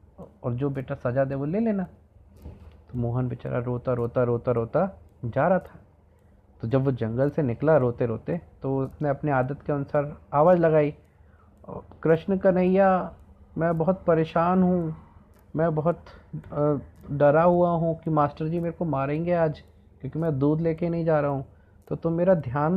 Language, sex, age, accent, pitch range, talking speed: Hindi, male, 30-49, native, 100-160 Hz, 175 wpm